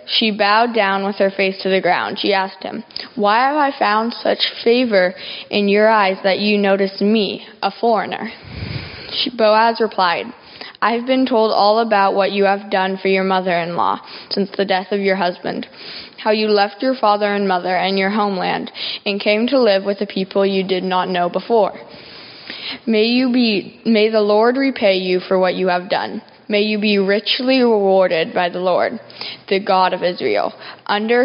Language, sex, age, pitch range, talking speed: English, female, 10-29, 190-220 Hz, 185 wpm